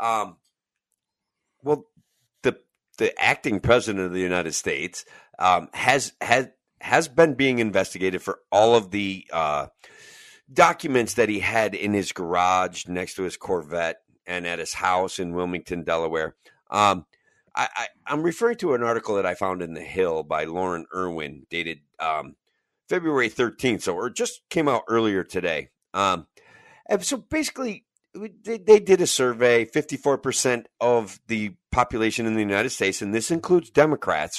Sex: male